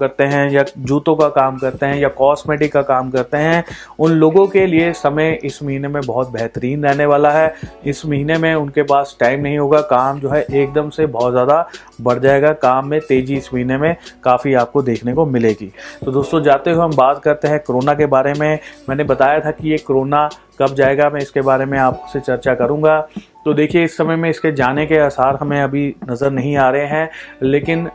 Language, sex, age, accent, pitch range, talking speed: Hindi, male, 30-49, native, 135-155 Hz, 215 wpm